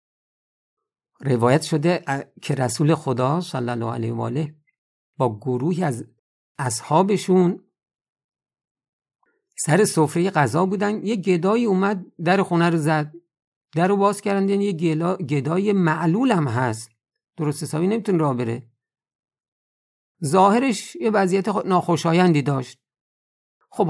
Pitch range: 130-185 Hz